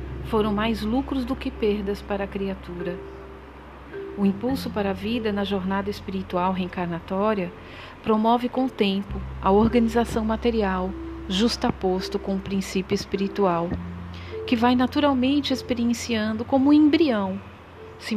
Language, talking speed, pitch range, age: Portuguese, 125 wpm, 175-230 Hz, 40-59